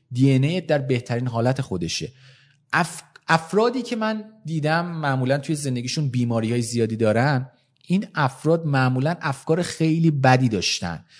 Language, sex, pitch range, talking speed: Persian, male, 120-180 Hz, 130 wpm